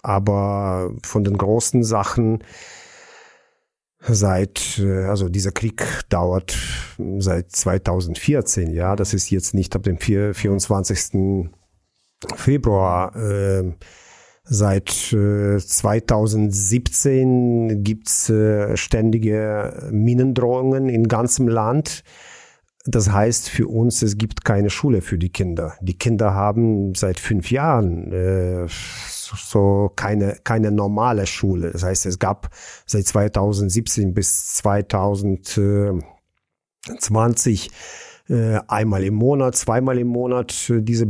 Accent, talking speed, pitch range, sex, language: German, 100 wpm, 95-115 Hz, male, German